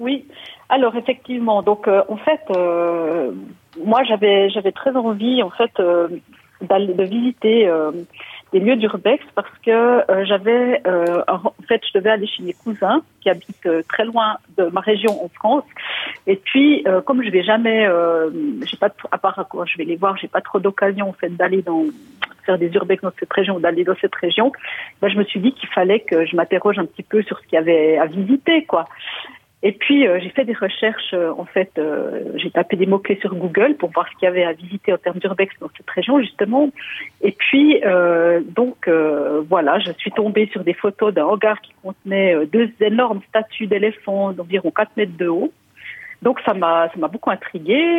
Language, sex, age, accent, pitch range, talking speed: French, female, 40-59, French, 180-225 Hz, 210 wpm